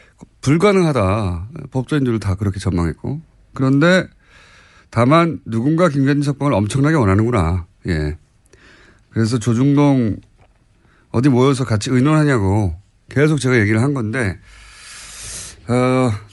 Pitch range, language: 100-145 Hz, Korean